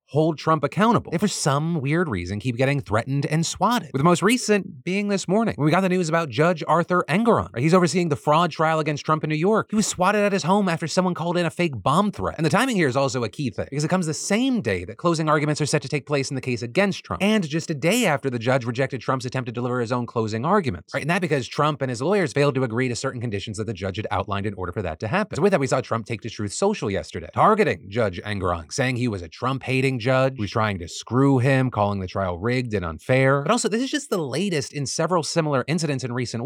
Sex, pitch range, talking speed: male, 120-175 Hz, 275 wpm